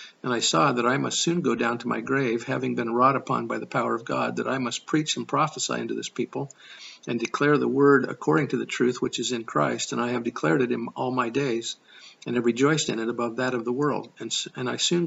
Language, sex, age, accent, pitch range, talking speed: English, male, 50-69, American, 115-135 Hz, 260 wpm